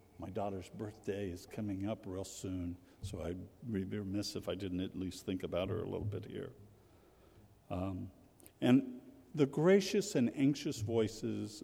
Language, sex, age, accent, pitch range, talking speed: English, male, 60-79, American, 95-140 Hz, 160 wpm